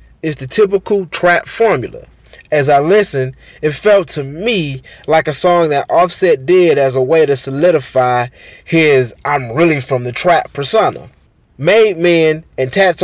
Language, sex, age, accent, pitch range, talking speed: English, male, 20-39, American, 135-190 Hz, 155 wpm